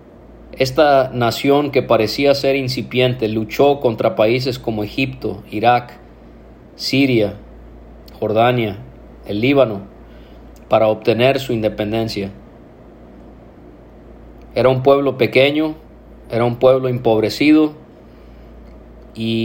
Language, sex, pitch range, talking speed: English, male, 105-135 Hz, 90 wpm